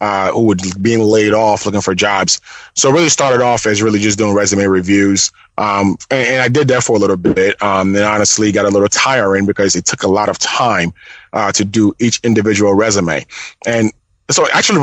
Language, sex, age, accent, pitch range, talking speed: English, male, 20-39, American, 105-120 Hz, 220 wpm